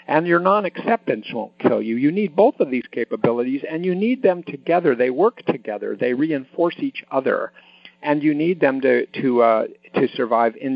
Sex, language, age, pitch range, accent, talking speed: male, English, 50-69, 120-165 Hz, American, 190 wpm